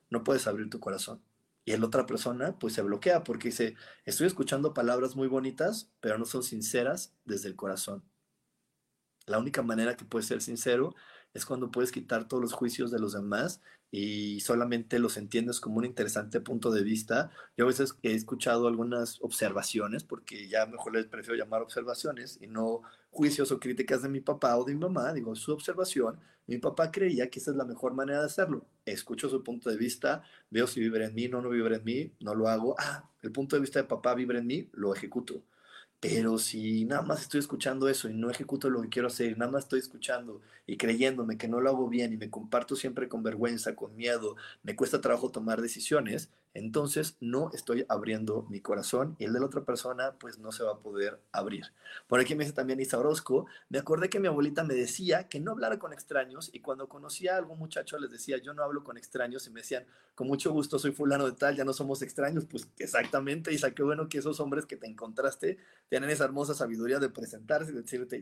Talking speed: 215 wpm